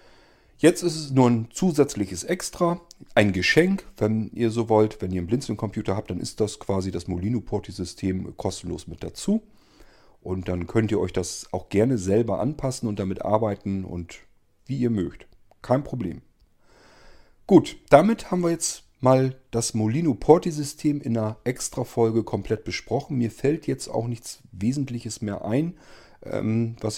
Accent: German